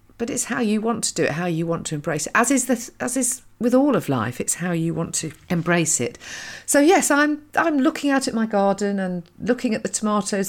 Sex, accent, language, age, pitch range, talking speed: female, British, English, 40-59, 170-245 Hz, 250 wpm